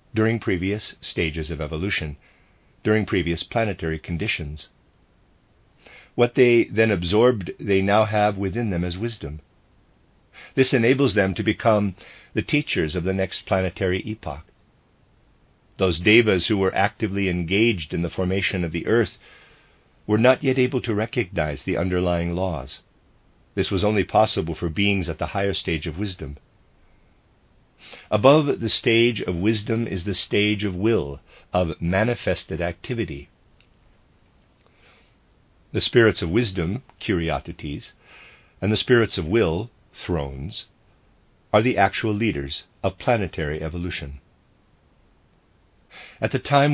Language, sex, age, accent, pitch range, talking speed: English, male, 50-69, American, 85-110 Hz, 125 wpm